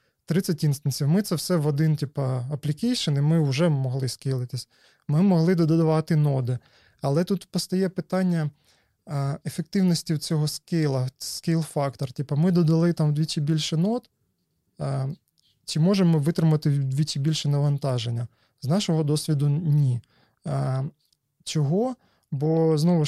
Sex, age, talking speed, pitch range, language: male, 20-39, 120 wpm, 140-165 Hz, Ukrainian